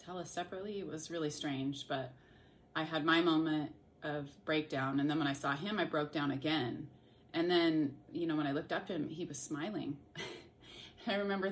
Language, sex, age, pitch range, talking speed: English, female, 30-49, 150-195 Hz, 205 wpm